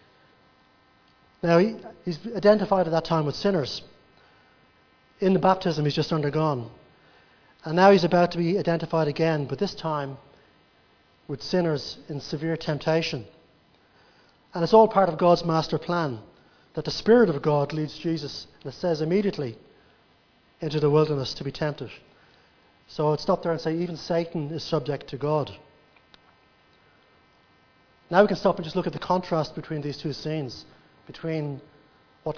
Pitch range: 140-165 Hz